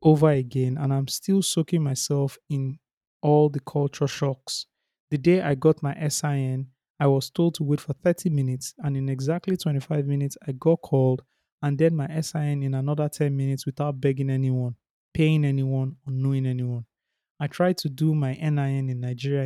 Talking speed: 180 wpm